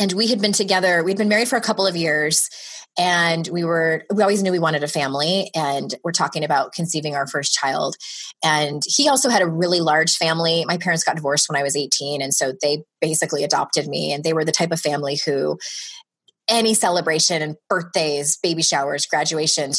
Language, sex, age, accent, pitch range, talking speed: English, female, 20-39, American, 155-210 Hz, 205 wpm